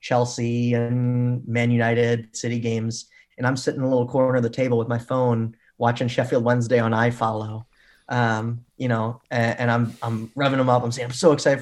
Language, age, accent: English, 20-39, American